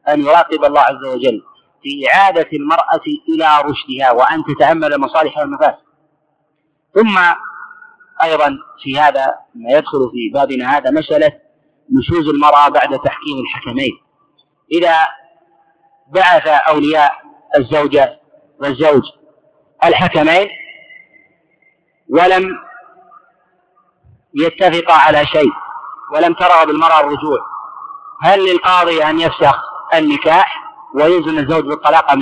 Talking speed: 95 wpm